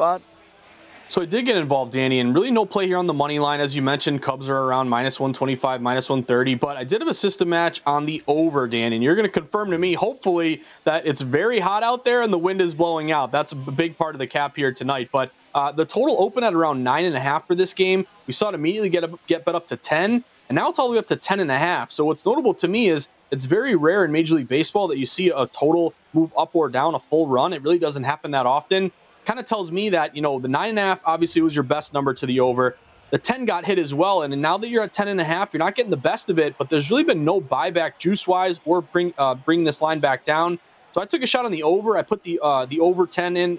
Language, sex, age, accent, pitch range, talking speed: English, male, 30-49, American, 145-185 Hz, 275 wpm